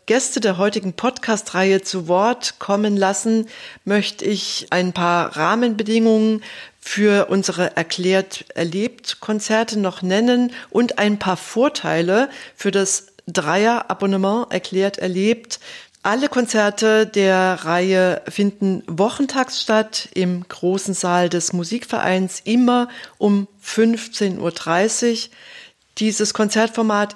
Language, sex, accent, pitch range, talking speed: German, female, German, 180-220 Hz, 95 wpm